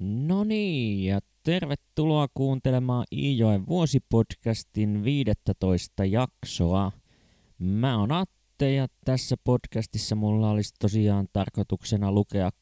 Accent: native